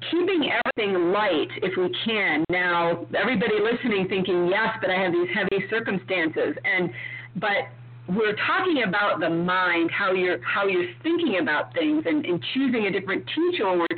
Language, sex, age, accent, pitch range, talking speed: English, female, 40-59, American, 175-260 Hz, 165 wpm